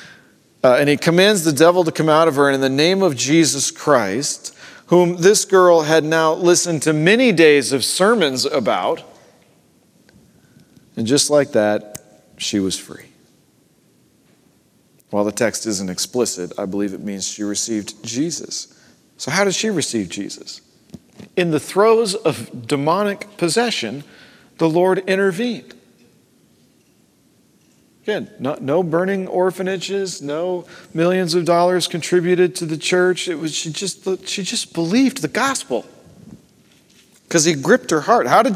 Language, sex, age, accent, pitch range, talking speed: English, male, 40-59, American, 140-185 Hz, 145 wpm